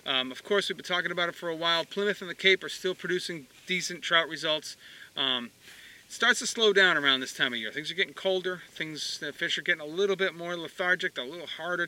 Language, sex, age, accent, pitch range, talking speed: English, male, 40-59, American, 135-180 Hz, 250 wpm